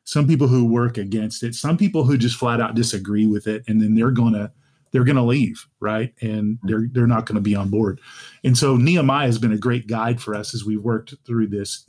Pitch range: 110-135 Hz